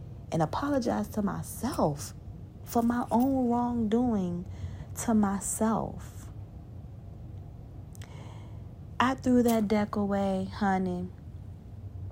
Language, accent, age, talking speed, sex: English, American, 40-59, 80 wpm, female